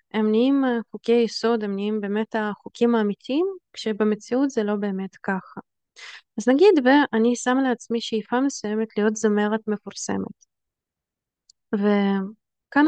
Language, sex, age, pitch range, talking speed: Hebrew, female, 20-39, 220-265 Hz, 115 wpm